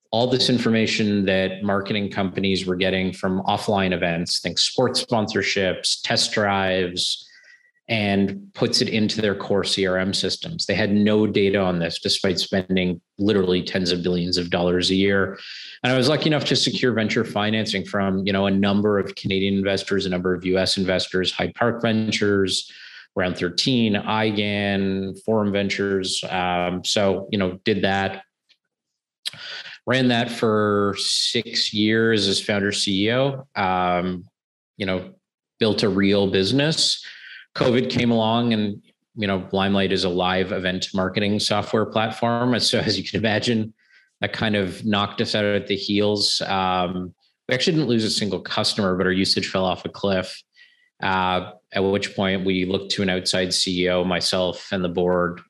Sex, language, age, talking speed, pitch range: male, English, 30-49, 160 wpm, 95-105 Hz